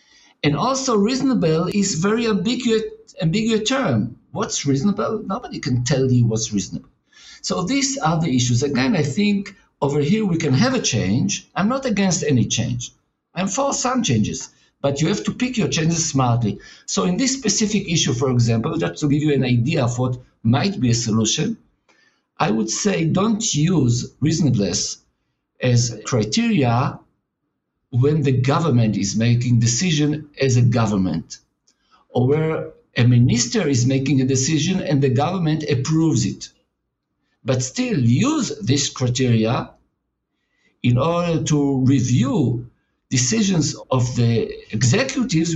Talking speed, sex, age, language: 145 wpm, male, 50-69, English